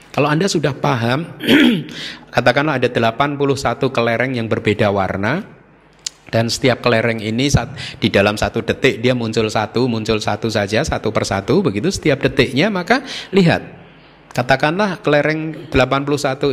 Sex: male